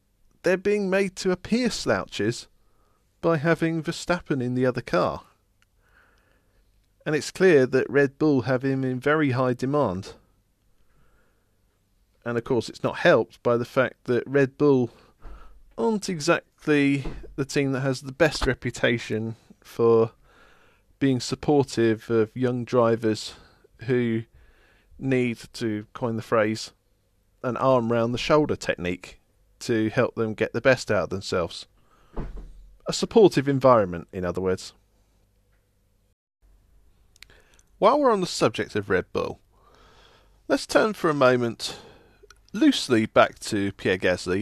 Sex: male